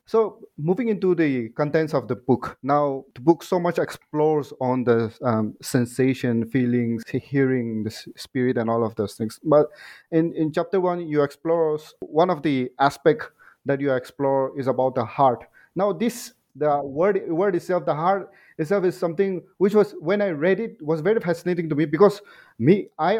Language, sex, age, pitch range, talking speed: English, male, 30-49, 125-170 Hz, 180 wpm